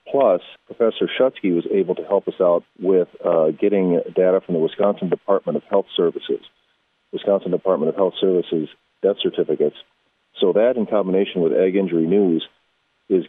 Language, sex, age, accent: English, male, 40-59, American